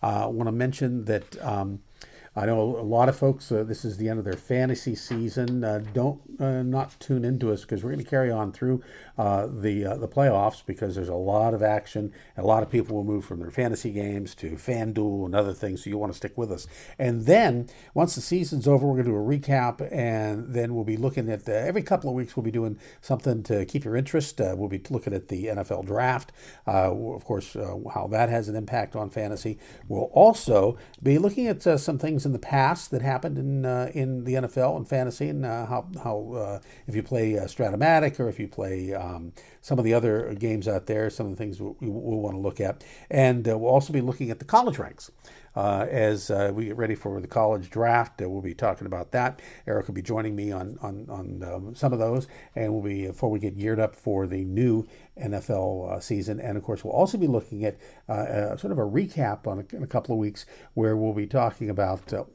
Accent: American